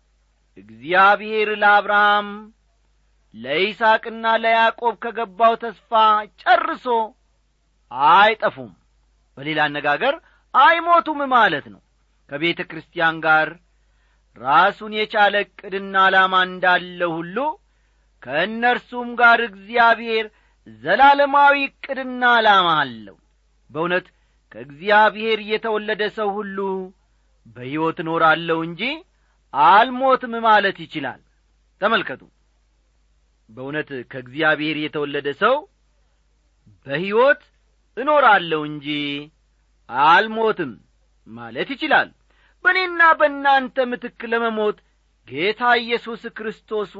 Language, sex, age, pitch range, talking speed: Amharic, male, 40-59, 150-230 Hz, 75 wpm